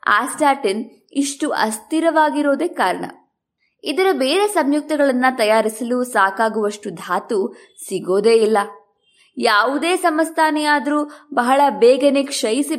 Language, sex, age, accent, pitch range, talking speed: Kannada, female, 20-39, native, 230-315 Hz, 70 wpm